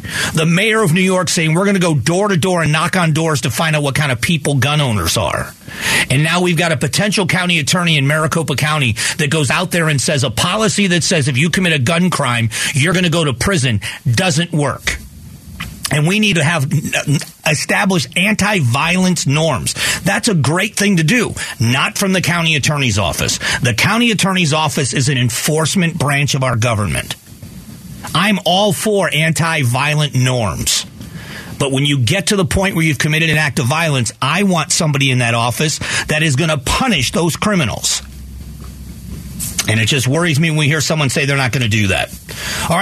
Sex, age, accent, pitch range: male, 40-59, American, 135-175 Hz